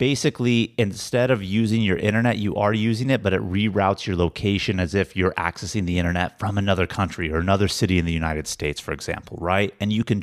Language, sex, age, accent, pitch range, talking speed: English, male, 30-49, American, 95-115 Hz, 215 wpm